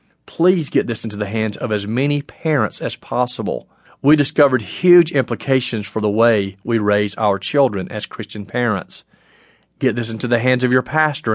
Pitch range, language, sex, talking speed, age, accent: 110-135 Hz, English, male, 180 wpm, 40-59, American